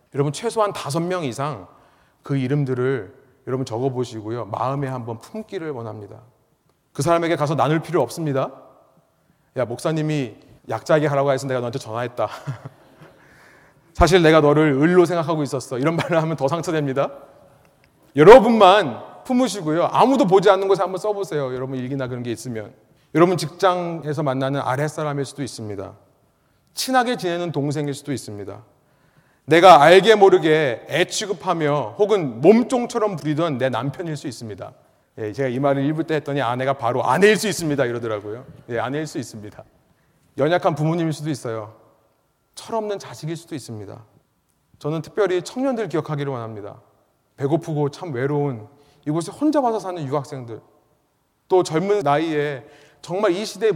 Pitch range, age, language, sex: 130-170 Hz, 30-49, Korean, male